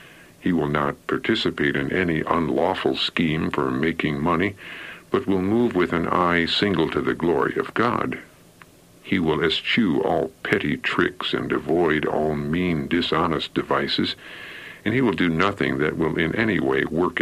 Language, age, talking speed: English, 60-79, 160 wpm